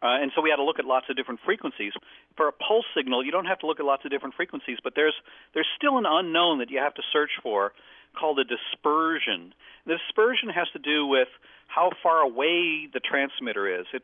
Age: 50-69